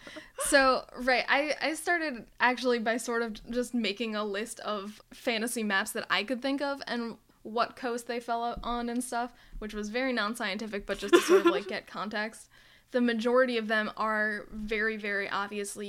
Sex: female